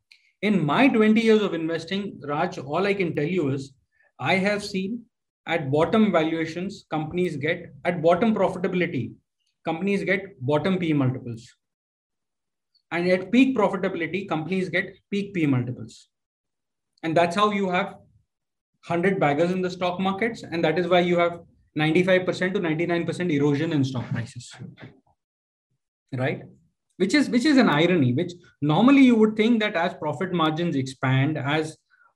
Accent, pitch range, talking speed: Indian, 145-185 Hz, 145 wpm